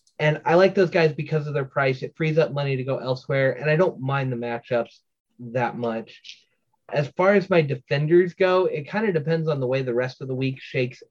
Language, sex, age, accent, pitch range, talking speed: English, male, 30-49, American, 130-160 Hz, 230 wpm